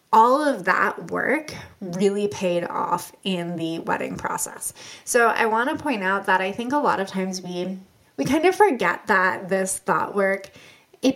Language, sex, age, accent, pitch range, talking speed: English, female, 20-39, American, 185-250 Hz, 185 wpm